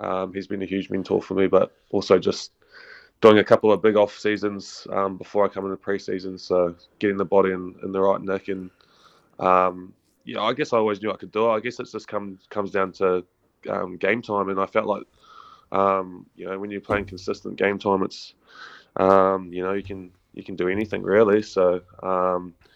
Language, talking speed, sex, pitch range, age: English, 215 wpm, male, 95-105 Hz, 20-39